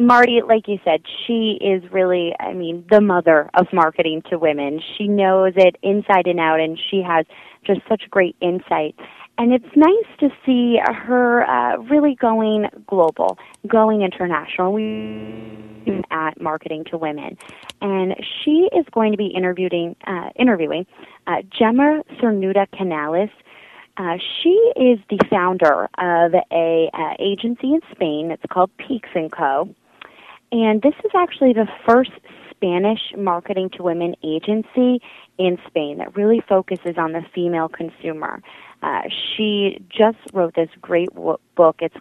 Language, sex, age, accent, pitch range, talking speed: English, female, 20-39, American, 170-225 Hz, 145 wpm